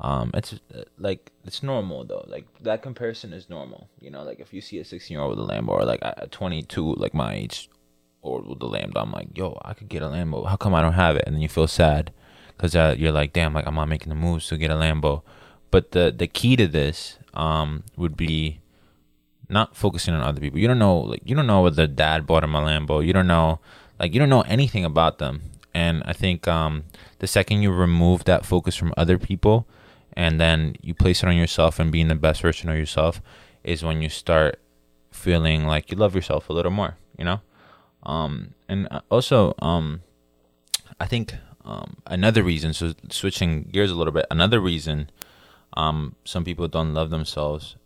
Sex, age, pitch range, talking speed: male, 20-39, 75-90 Hz, 215 wpm